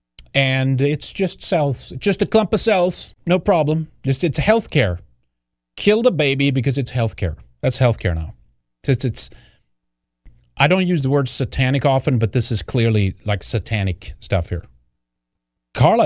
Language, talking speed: English, 155 wpm